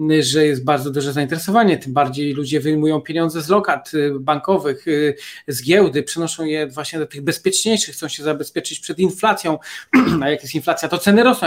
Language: Polish